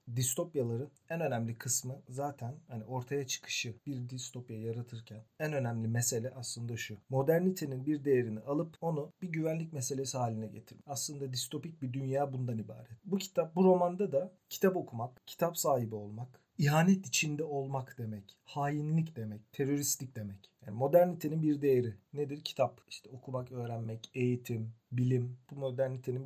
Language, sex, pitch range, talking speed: Turkish, male, 120-150 Hz, 145 wpm